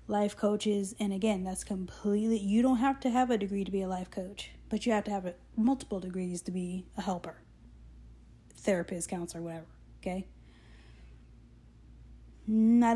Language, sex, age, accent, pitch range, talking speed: English, female, 30-49, American, 170-215 Hz, 160 wpm